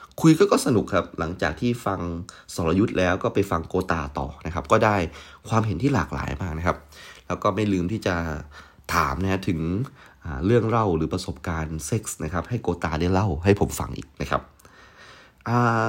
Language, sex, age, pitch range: Thai, male, 30-49, 80-105 Hz